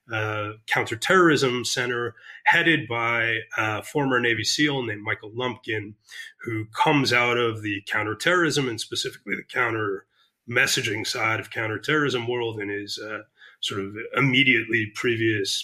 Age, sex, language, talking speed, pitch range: 30-49, male, English, 125 wpm, 110-130 Hz